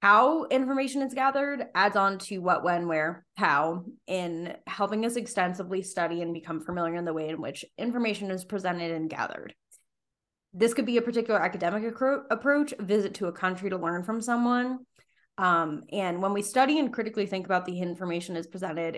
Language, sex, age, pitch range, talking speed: English, female, 20-39, 175-220 Hz, 185 wpm